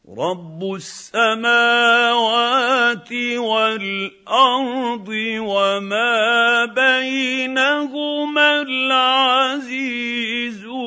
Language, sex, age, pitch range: Arabic, male, 50-69, 200-240 Hz